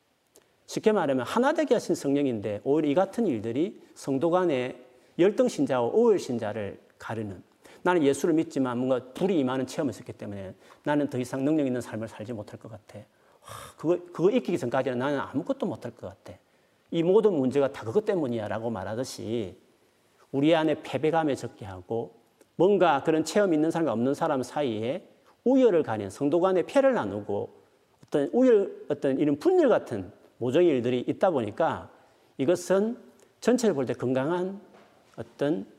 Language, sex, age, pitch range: Korean, male, 40-59, 125-205 Hz